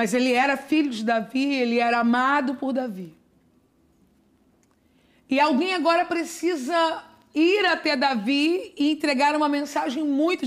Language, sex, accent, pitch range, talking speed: Portuguese, female, Brazilian, 250-315 Hz, 130 wpm